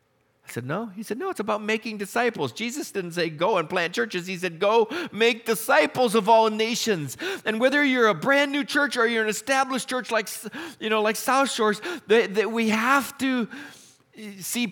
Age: 40-59